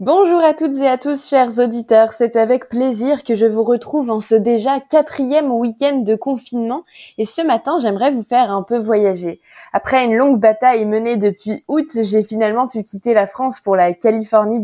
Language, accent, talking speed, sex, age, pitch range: French, French, 195 wpm, female, 20-39, 210-265 Hz